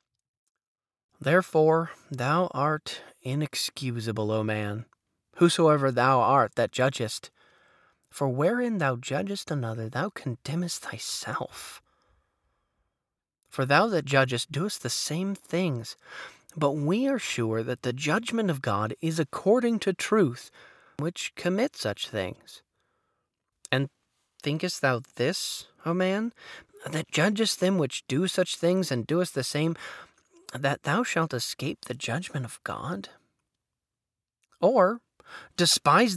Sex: male